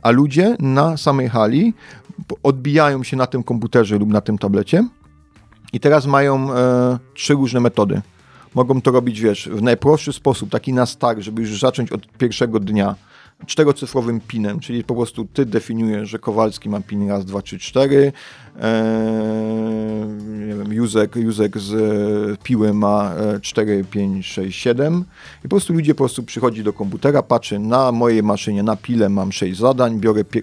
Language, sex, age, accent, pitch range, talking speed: Polish, male, 40-59, native, 105-125 Hz, 165 wpm